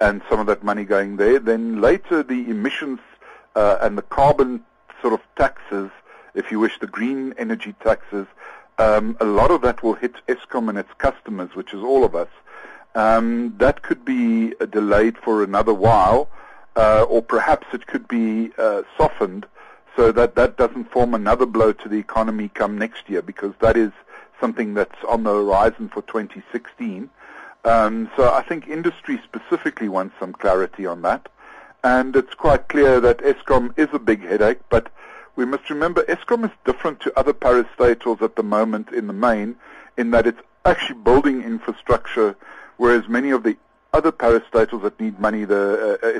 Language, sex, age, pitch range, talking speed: English, male, 60-79, 110-155 Hz, 175 wpm